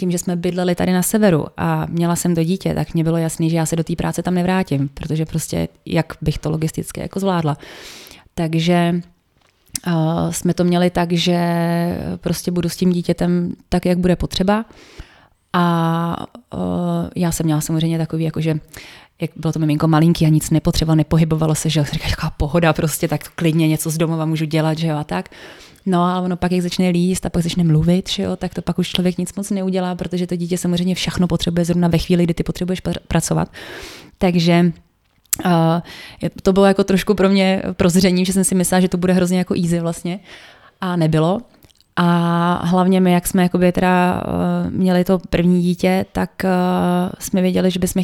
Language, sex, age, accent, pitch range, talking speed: Czech, female, 20-39, native, 165-185 Hz, 190 wpm